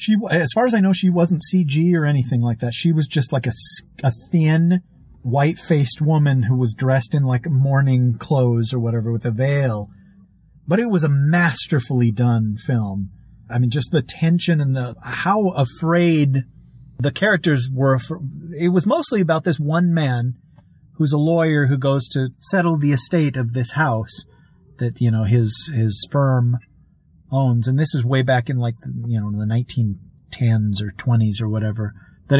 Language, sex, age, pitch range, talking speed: English, male, 40-59, 120-155 Hz, 180 wpm